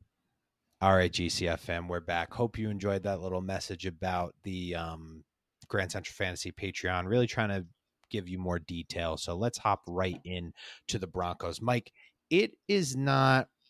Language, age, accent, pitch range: English, 30-49, American, 90-110 Hz